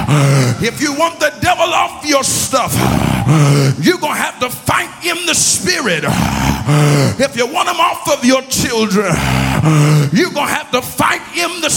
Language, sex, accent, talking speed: English, male, American, 170 wpm